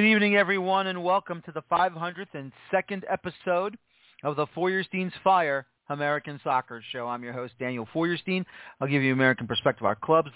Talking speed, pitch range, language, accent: 175 wpm, 125-160 Hz, English, American